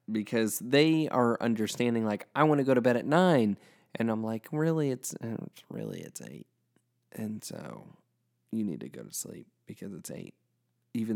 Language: English